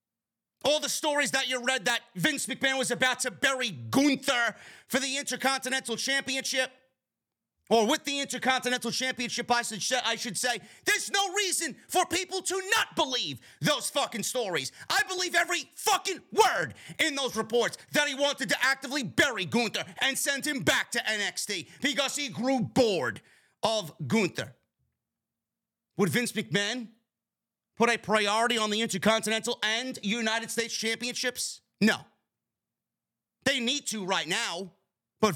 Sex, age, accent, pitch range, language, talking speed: male, 30-49, American, 205-270 Hz, English, 145 wpm